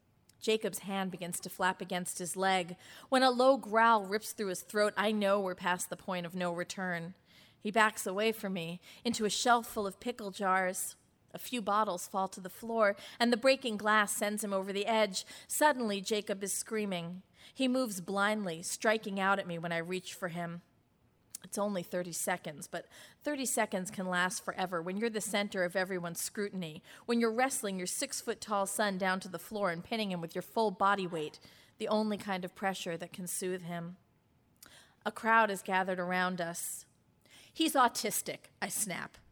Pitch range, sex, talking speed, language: 180-220 Hz, female, 190 wpm, English